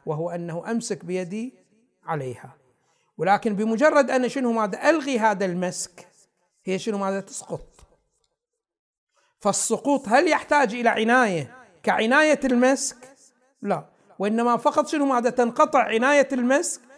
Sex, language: male, Arabic